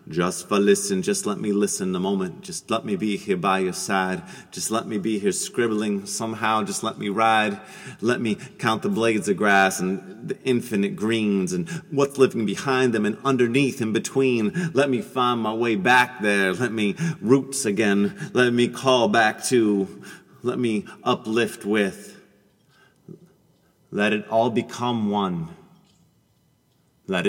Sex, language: male, English